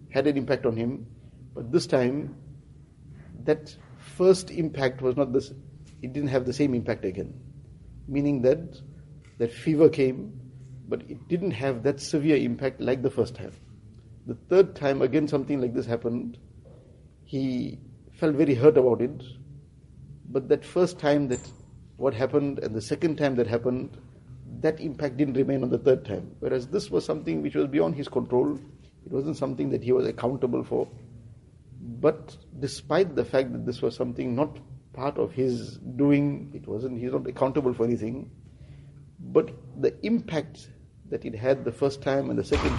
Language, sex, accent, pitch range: English, male, Indian, 125-145 Hz